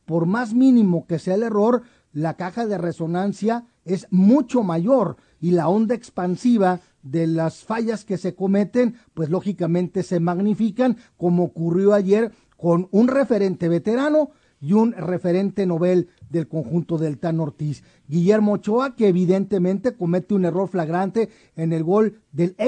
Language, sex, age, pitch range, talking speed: Spanish, male, 40-59, 175-225 Hz, 145 wpm